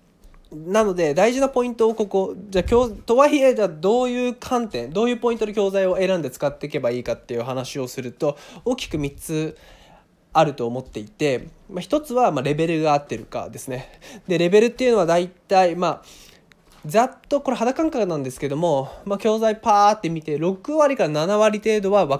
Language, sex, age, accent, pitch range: Japanese, male, 20-39, native, 145-210 Hz